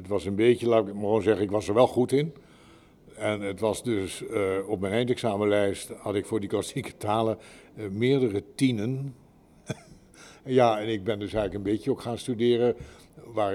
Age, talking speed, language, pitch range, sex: 60-79, 195 wpm, Dutch, 100-120 Hz, male